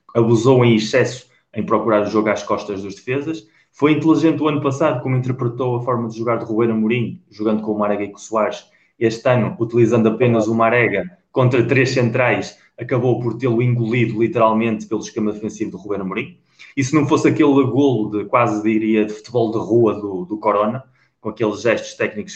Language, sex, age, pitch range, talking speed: Portuguese, male, 20-39, 110-125 Hz, 195 wpm